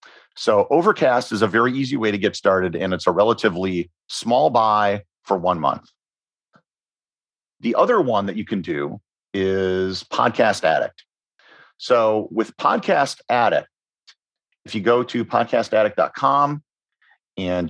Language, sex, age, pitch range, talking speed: English, male, 40-59, 95-125 Hz, 130 wpm